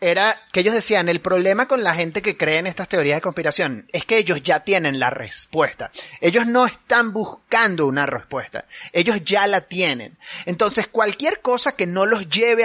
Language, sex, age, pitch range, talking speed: Spanish, male, 30-49, 185-235 Hz, 190 wpm